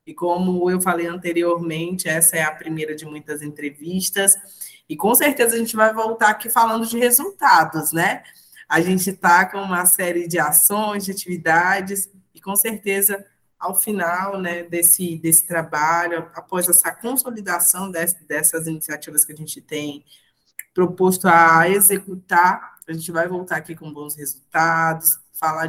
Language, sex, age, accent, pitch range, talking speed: Portuguese, female, 20-39, Brazilian, 165-195 Hz, 150 wpm